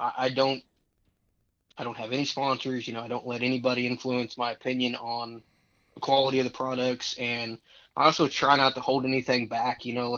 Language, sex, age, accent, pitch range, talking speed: English, male, 20-39, American, 120-135 Hz, 200 wpm